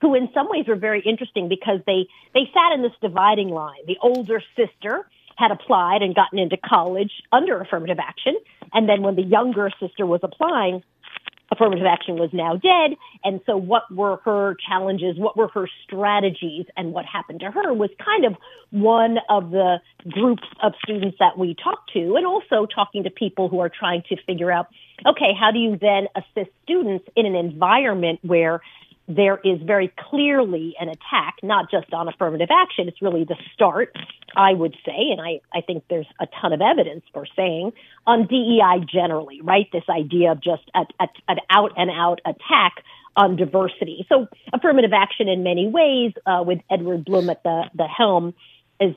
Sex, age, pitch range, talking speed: female, 50-69, 175-220 Hz, 185 wpm